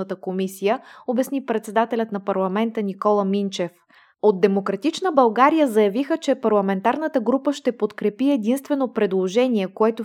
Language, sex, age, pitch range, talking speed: Bulgarian, female, 20-39, 205-245 Hz, 115 wpm